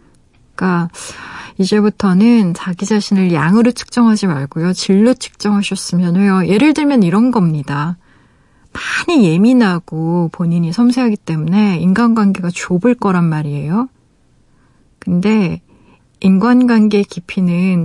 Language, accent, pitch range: Korean, native, 170-210 Hz